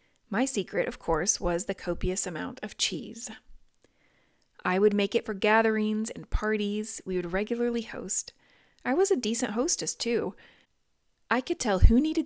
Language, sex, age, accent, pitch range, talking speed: English, female, 30-49, American, 185-240 Hz, 160 wpm